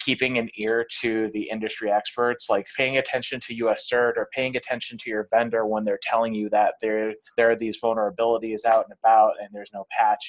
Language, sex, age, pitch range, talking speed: English, male, 20-39, 110-130 Hz, 210 wpm